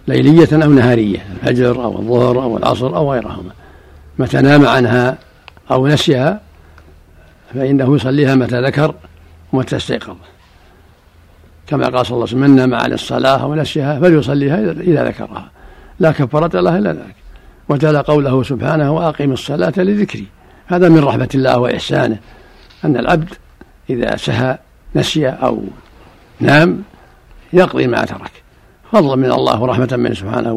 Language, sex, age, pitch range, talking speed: Arabic, male, 60-79, 110-145 Hz, 125 wpm